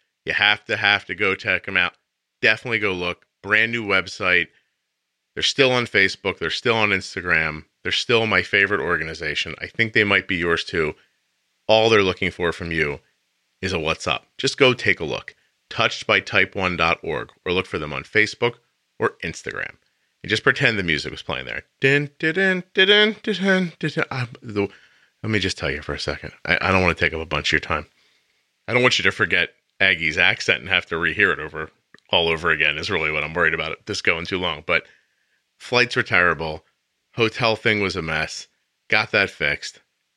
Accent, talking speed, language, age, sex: American, 190 wpm, English, 40-59, male